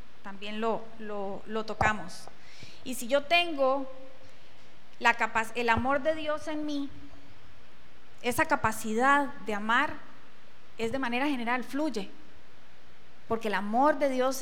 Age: 30-49